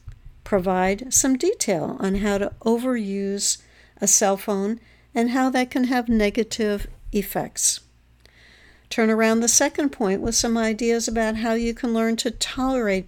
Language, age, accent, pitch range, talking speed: English, 60-79, American, 185-240 Hz, 145 wpm